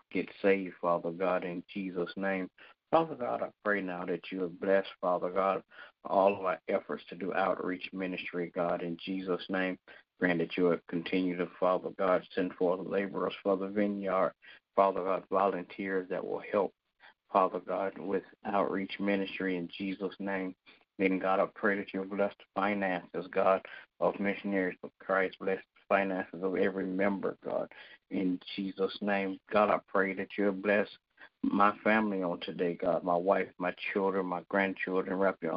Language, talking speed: English, 175 wpm